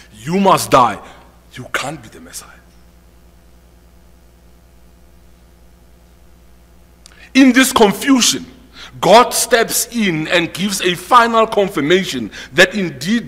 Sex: male